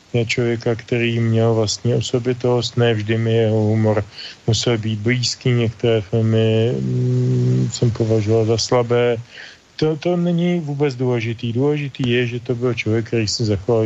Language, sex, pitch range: Slovak, male, 105-120 Hz